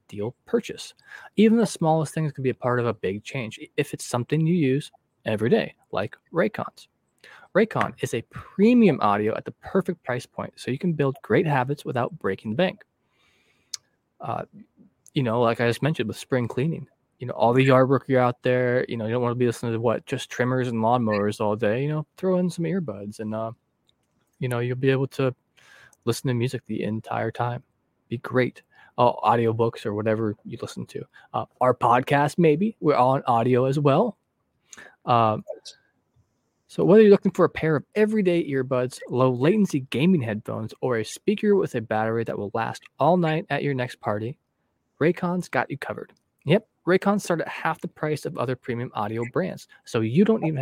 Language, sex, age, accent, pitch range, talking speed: English, male, 20-39, American, 115-160 Hz, 200 wpm